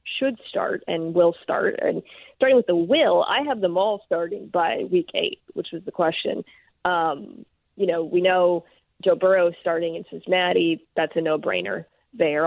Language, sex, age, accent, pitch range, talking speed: English, female, 20-39, American, 170-220 Hz, 170 wpm